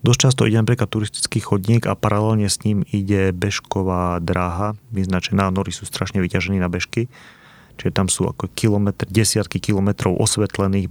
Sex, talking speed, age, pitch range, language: male, 155 wpm, 30-49, 95-115 Hz, Slovak